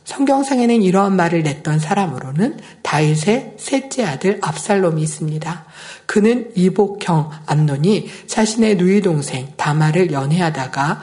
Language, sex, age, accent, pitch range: Korean, male, 50-69, native, 155-210 Hz